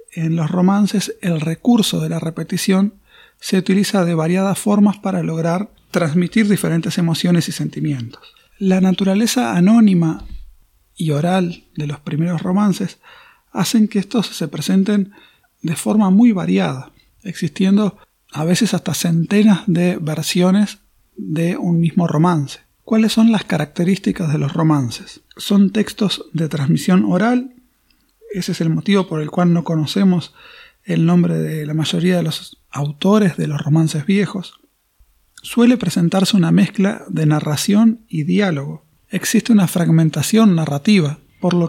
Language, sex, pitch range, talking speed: Spanish, male, 165-205 Hz, 140 wpm